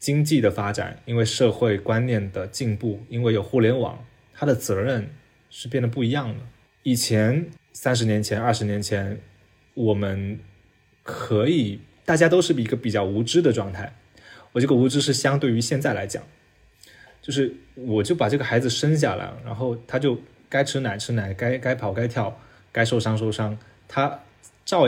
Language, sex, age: Chinese, male, 20-39